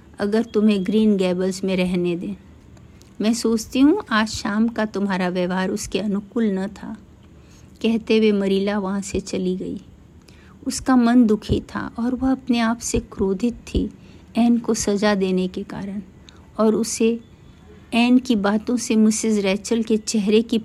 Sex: female